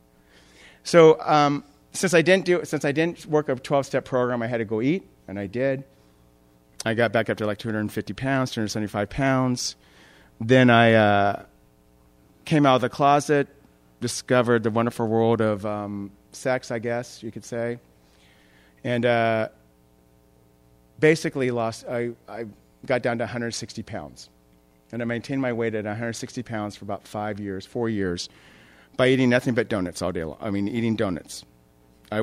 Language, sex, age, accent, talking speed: English, male, 40-59, American, 165 wpm